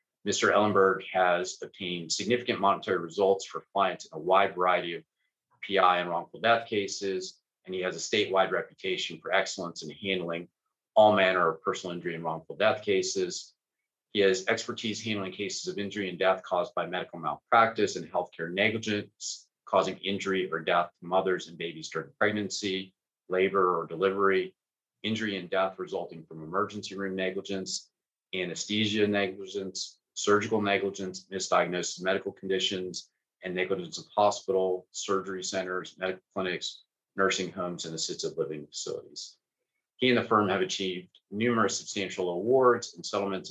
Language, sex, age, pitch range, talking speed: English, male, 30-49, 90-105 Hz, 150 wpm